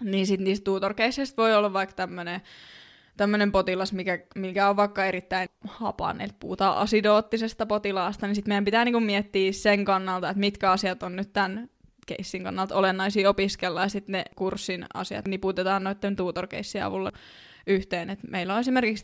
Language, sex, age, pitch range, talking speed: Finnish, female, 20-39, 190-220 Hz, 160 wpm